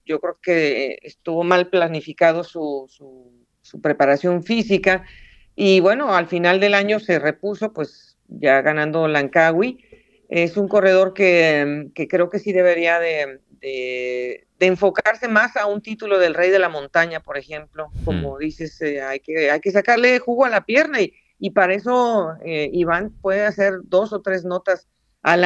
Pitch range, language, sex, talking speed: 150-190 Hz, Spanish, female, 170 wpm